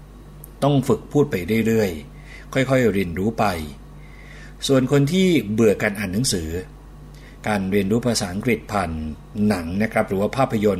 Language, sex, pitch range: Thai, male, 90-120 Hz